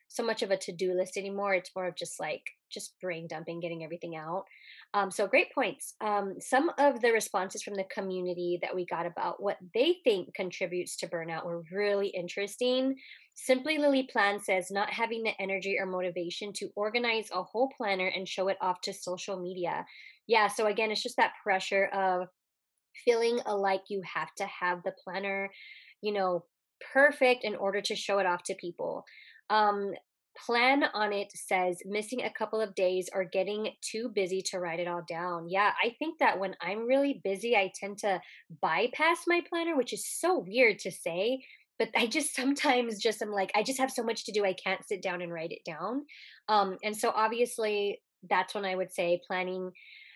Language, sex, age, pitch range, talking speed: English, female, 20-39, 185-230 Hz, 195 wpm